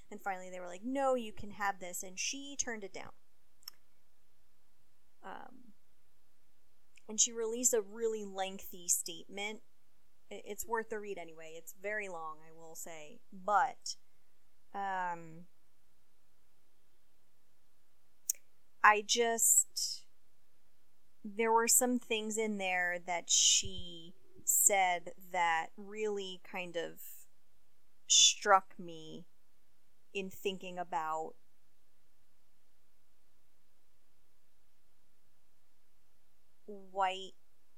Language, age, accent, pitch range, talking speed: English, 30-49, American, 180-215 Hz, 90 wpm